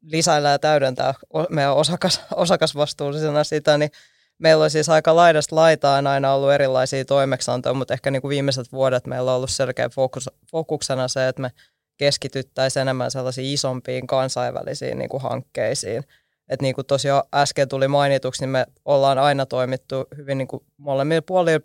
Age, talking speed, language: 20-39, 150 wpm, Finnish